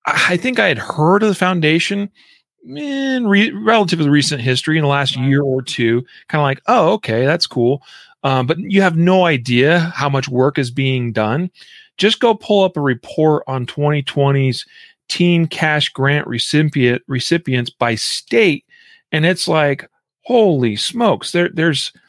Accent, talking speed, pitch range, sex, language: American, 165 wpm, 130-180 Hz, male, English